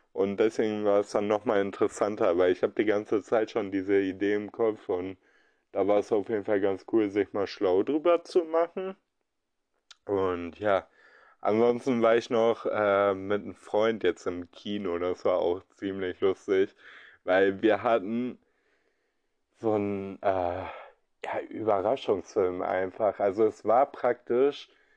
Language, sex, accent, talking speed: German, male, German, 150 wpm